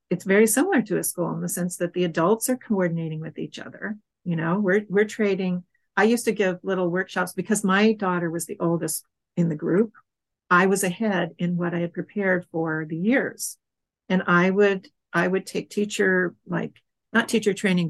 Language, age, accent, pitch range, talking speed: English, 50-69, American, 170-200 Hz, 200 wpm